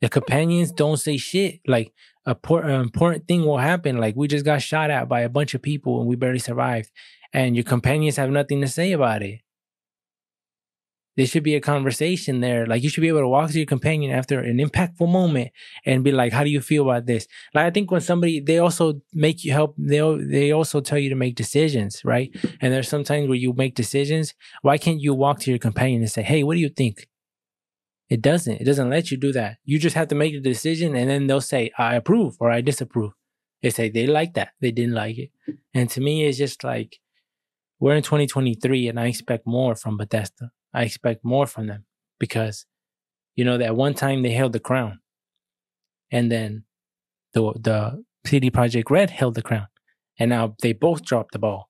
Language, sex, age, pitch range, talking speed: English, male, 20-39, 120-150 Hz, 215 wpm